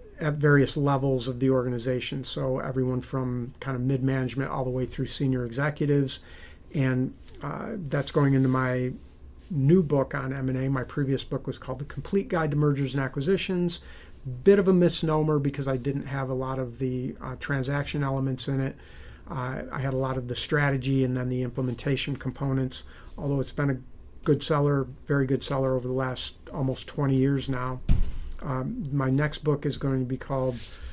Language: English